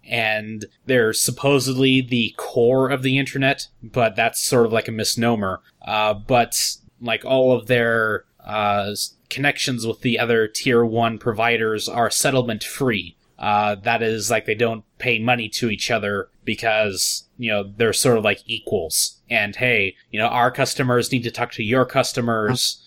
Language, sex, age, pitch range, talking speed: English, male, 20-39, 110-130 Hz, 165 wpm